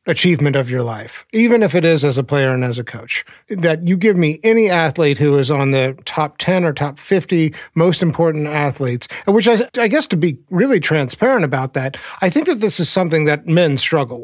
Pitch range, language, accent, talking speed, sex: 140-175 Hz, English, American, 220 wpm, male